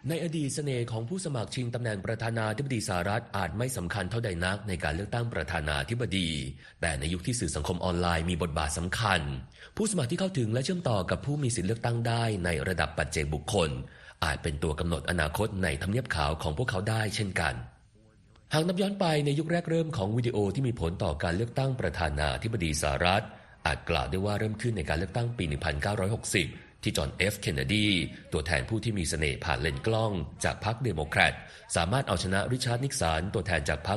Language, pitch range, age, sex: Thai, 85-115 Hz, 30-49, male